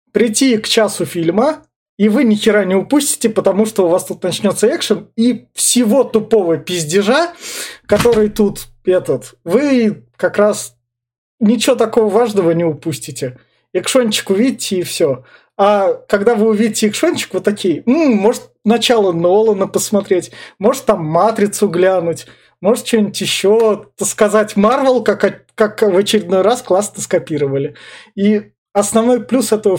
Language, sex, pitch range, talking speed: Russian, male, 180-220 Hz, 135 wpm